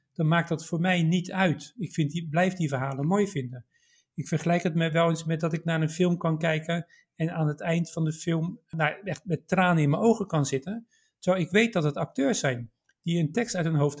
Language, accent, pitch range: Dutch, Dutch, 150-190 Hz